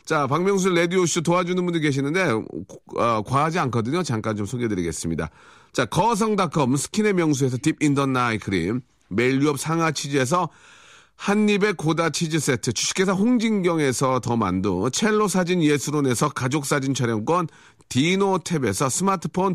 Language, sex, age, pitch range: Korean, male, 40-59, 140-190 Hz